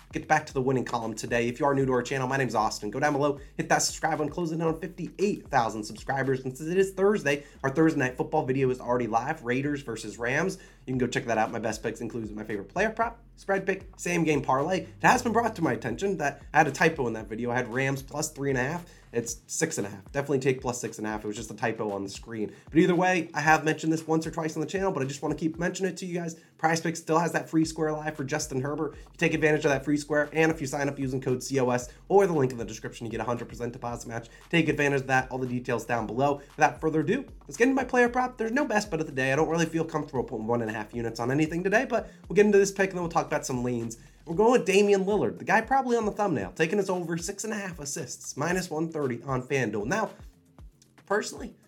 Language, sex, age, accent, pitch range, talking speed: English, male, 20-39, American, 125-170 Hz, 285 wpm